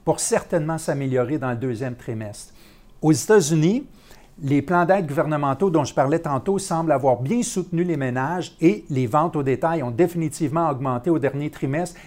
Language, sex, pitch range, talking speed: French, male, 140-175 Hz, 170 wpm